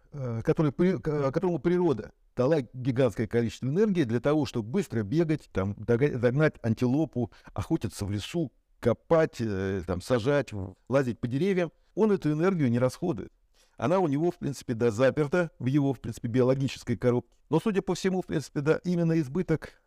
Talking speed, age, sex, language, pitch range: 140 wpm, 60-79, male, Russian, 120-170 Hz